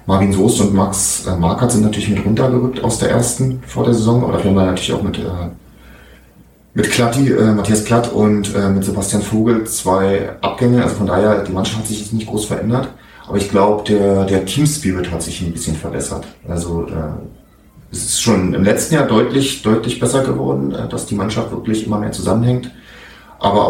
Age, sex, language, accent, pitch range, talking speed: 30-49, male, German, German, 90-110 Hz, 195 wpm